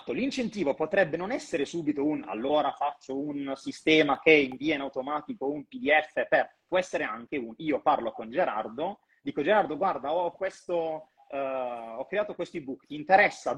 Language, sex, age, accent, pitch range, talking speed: Italian, male, 30-49, native, 130-185 Hz, 165 wpm